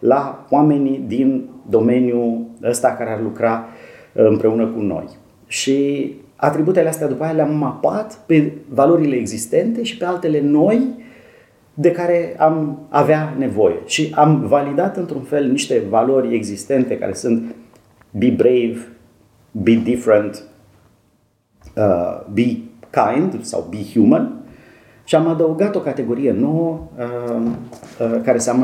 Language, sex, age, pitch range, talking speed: Romanian, male, 40-59, 115-155 Hz, 120 wpm